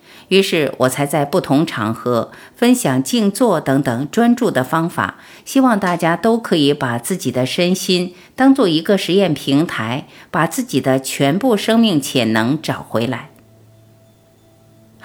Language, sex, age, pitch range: Chinese, female, 50-69, 135-200 Hz